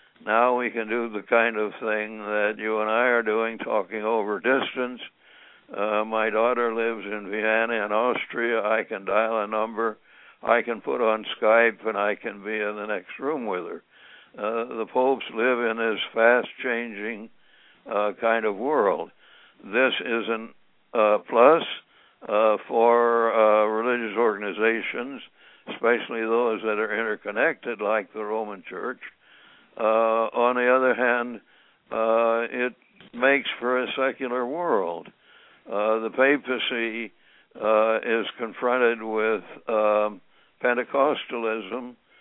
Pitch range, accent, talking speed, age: 110-120 Hz, American, 135 wpm, 60-79